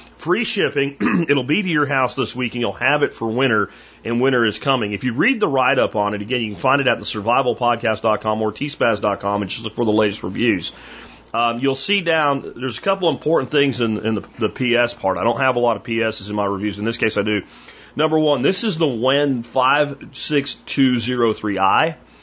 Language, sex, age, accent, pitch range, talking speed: English, male, 40-59, American, 110-135 Hz, 215 wpm